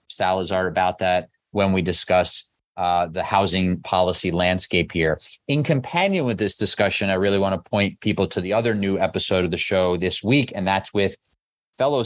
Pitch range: 90-110 Hz